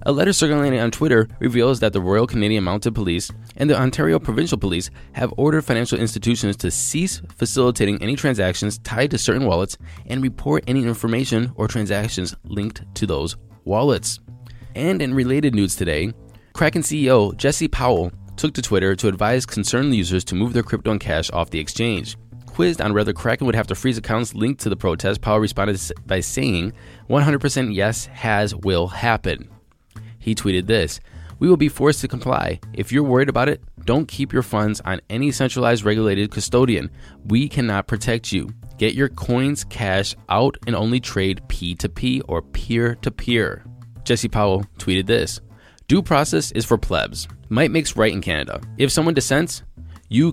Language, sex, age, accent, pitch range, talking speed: English, male, 20-39, American, 100-125 Hz, 170 wpm